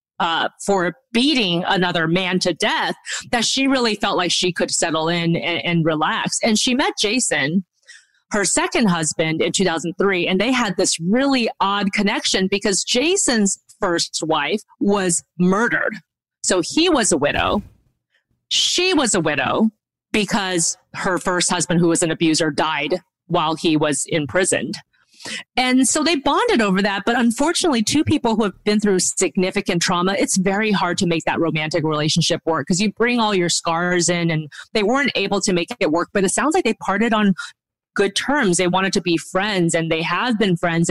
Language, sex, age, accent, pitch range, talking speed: English, female, 30-49, American, 175-225 Hz, 180 wpm